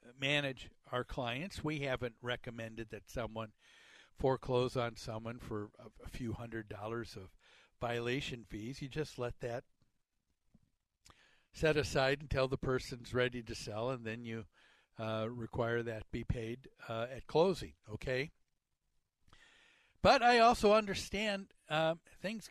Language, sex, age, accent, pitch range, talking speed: English, male, 60-79, American, 120-175 Hz, 130 wpm